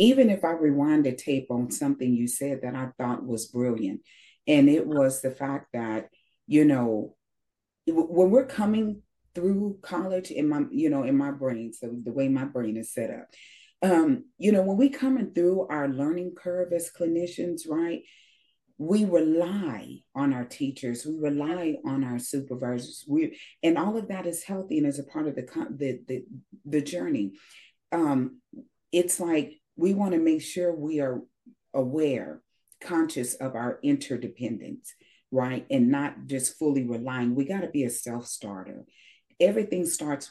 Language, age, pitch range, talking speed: English, 40-59, 135-185 Hz, 165 wpm